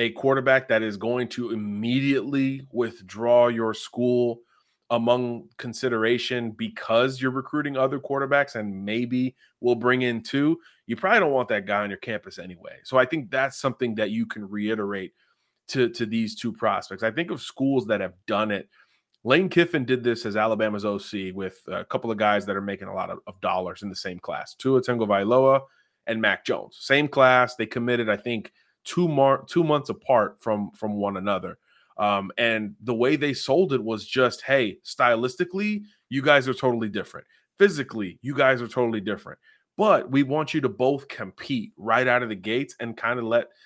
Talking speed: 190 wpm